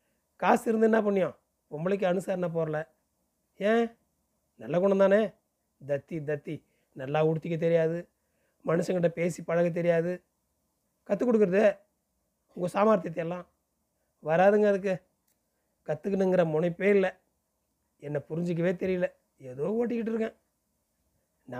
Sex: male